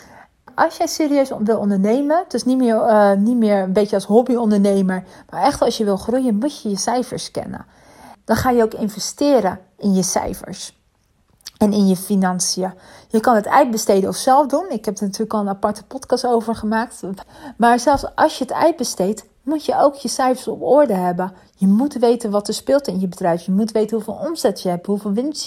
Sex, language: female, Dutch